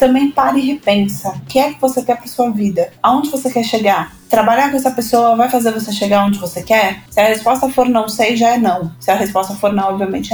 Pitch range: 220-265 Hz